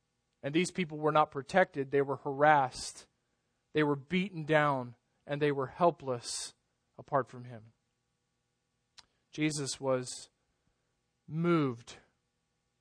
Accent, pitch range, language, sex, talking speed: American, 140-165 Hz, English, male, 110 wpm